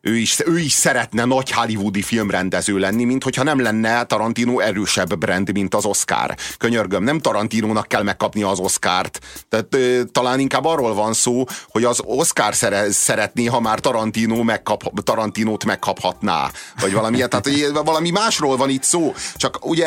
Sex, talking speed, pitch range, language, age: male, 160 wpm, 110-140 Hz, Hungarian, 30-49